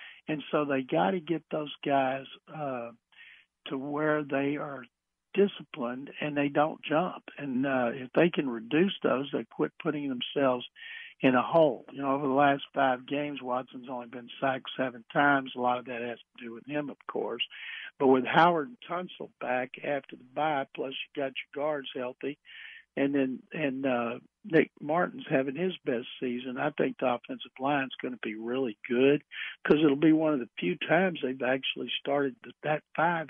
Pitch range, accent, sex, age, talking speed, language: 130-160 Hz, American, male, 60-79, 190 wpm, English